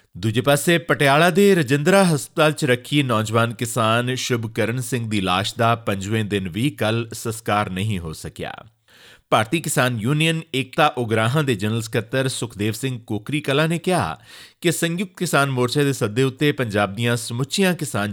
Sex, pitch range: male, 105-150 Hz